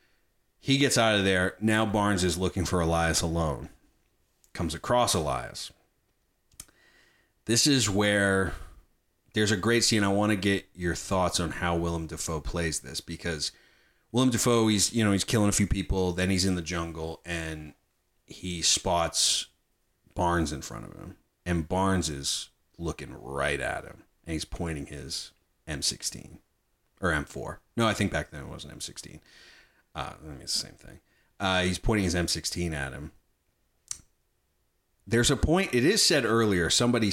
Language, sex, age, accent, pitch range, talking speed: English, male, 30-49, American, 85-105 Hz, 170 wpm